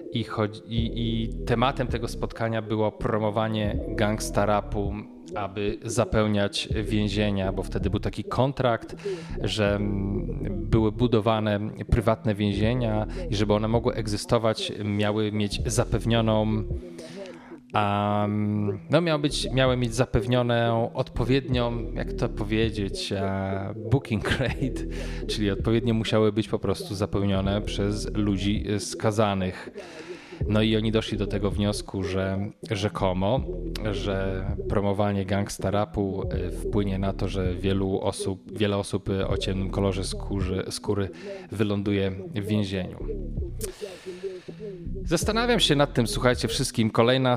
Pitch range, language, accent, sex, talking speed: 100-115 Hz, Polish, native, male, 115 wpm